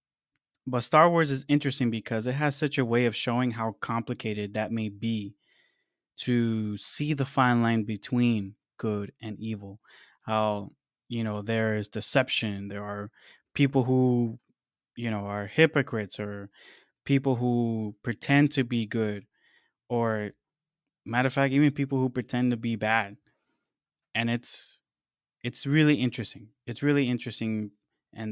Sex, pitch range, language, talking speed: male, 110-130 Hz, English, 145 wpm